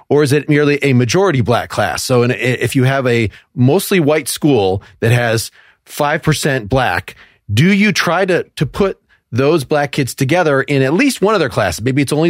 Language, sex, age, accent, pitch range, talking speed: English, male, 30-49, American, 115-155 Hz, 195 wpm